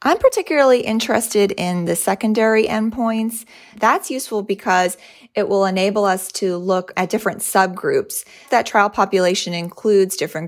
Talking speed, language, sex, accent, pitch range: 135 wpm, English, female, American, 175-210 Hz